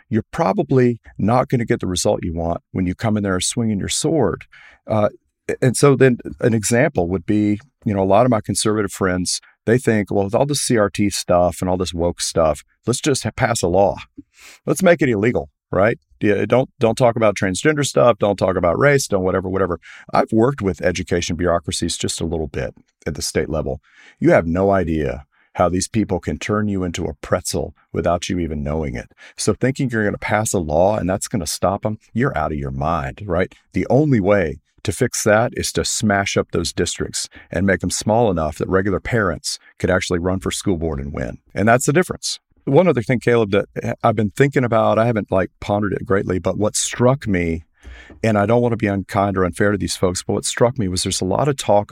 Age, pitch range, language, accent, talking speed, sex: 40-59, 90-115 Hz, English, American, 225 wpm, male